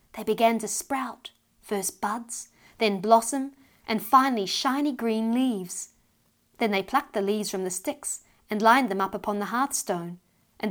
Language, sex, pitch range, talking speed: English, female, 185-235 Hz, 160 wpm